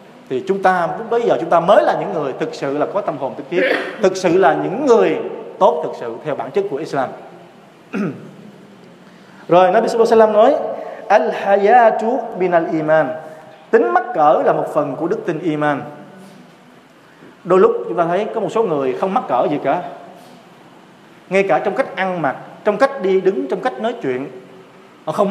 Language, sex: Vietnamese, male